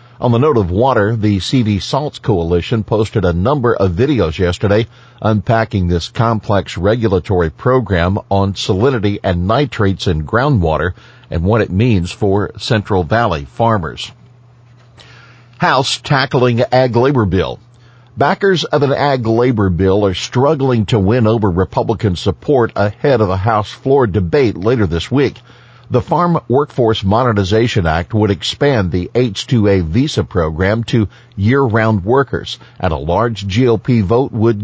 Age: 50-69